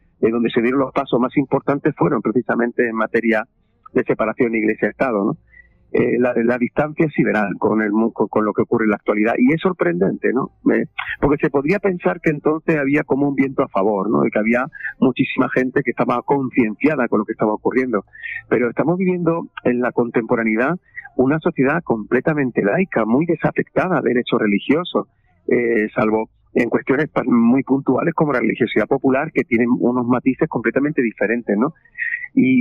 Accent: Spanish